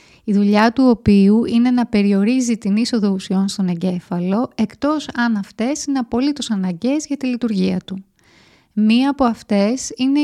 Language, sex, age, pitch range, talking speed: Greek, female, 30-49, 200-260 Hz, 150 wpm